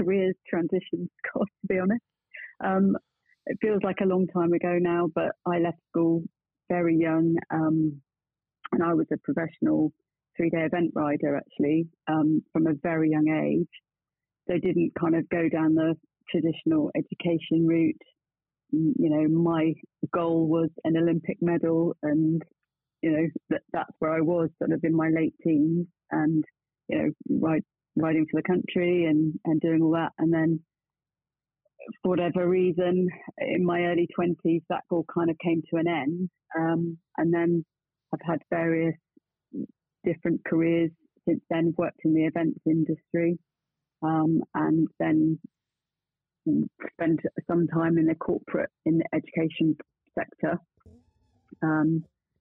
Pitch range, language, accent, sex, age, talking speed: 160-170 Hz, English, British, female, 30-49, 150 wpm